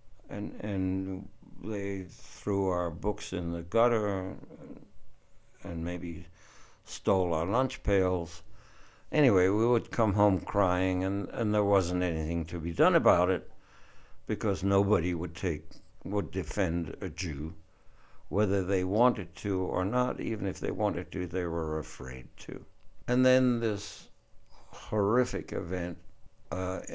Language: English